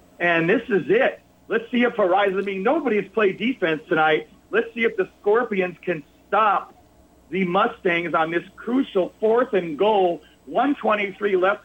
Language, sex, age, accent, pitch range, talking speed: English, male, 50-69, American, 150-195 Hz, 160 wpm